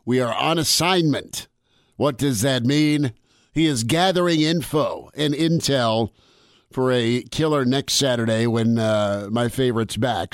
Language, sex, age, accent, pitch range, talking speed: English, male, 50-69, American, 120-145 Hz, 140 wpm